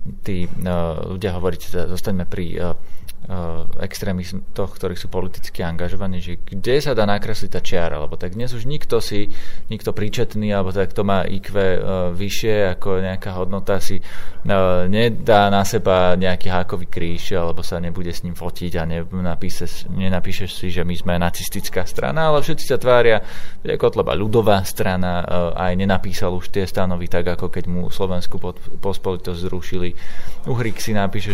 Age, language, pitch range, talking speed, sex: 20-39, Slovak, 90-100 Hz, 165 wpm, male